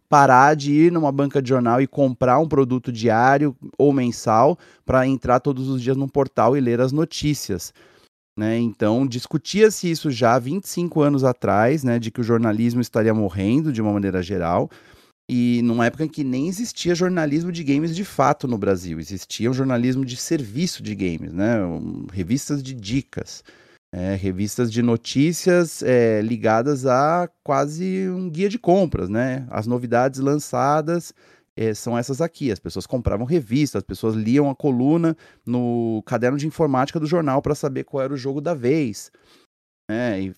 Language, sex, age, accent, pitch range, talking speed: Portuguese, male, 30-49, Brazilian, 115-150 Hz, 170 wpm